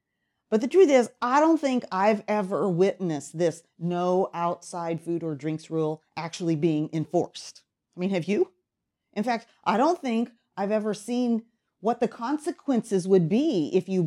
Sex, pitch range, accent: female, 170-220 Hz, American